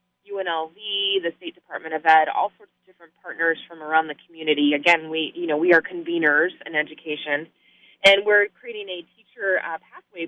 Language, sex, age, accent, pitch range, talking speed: English, female, 20-39, American, 155-205 Hz, 180 wpm